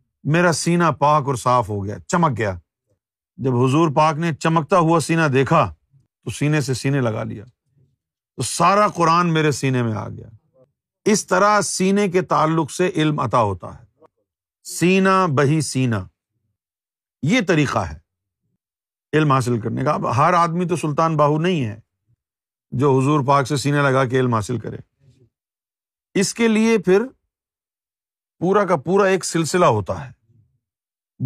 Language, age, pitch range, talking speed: Urdu, 50-69, 125-170 Hz, 155 wpm